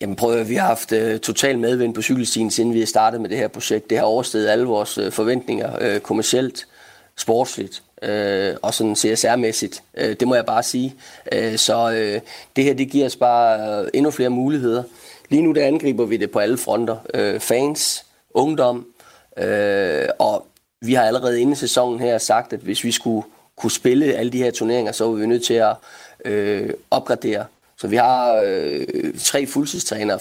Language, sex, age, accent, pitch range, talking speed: Danish, male, 30-49, native, 110-135 Hz, 190 wpm